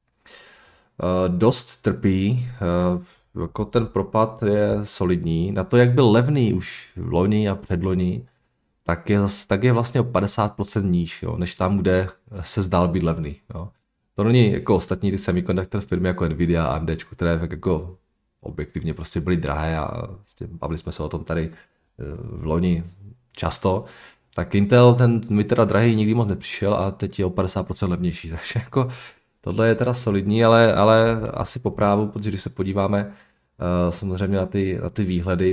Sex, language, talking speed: male, Czech, 170 wpm